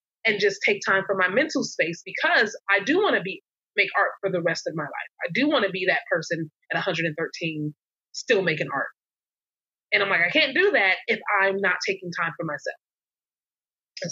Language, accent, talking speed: English, American, 210 wpm